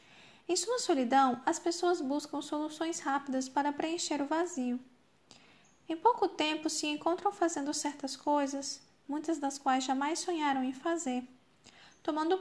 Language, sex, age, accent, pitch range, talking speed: Portuguese, female, 10-29, Brazilian, 265-325 Hz, 135 wpm